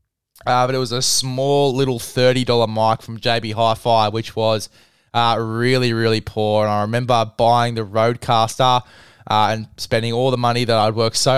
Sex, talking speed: male, 185 wpm